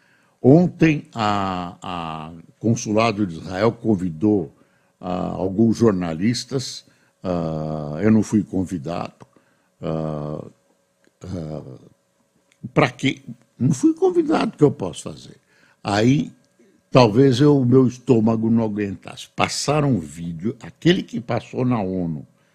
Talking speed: 105 wpm